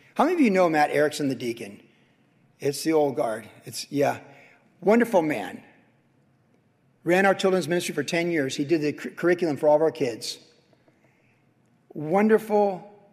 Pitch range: 145-180 Hz